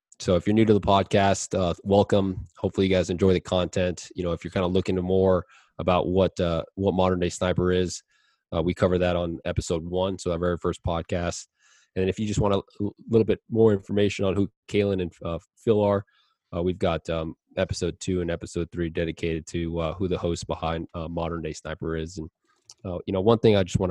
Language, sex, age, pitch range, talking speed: English, male, 20-39, 85-95 Hz, 230 wpm